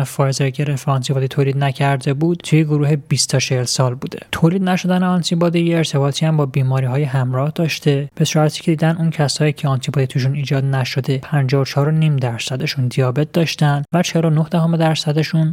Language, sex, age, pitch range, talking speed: Persian, male, 20-39, 135-165 Hz, 175 wpm